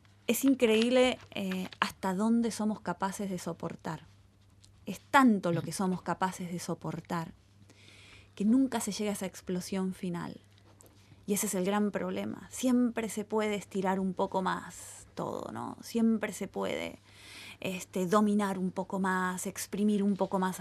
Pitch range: 175-230 Hz